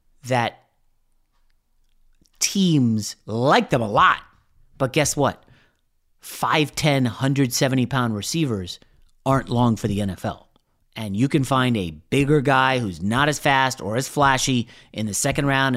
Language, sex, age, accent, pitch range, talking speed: English, male, 30-49, American, 115-150 Hz, 135 wpm